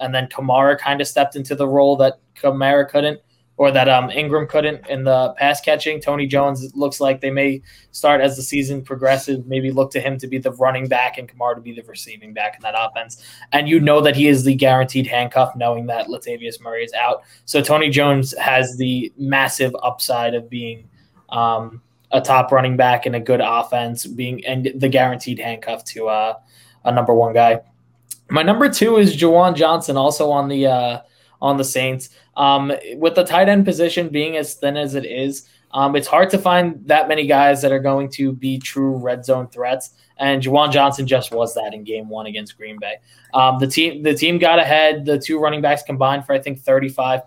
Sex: male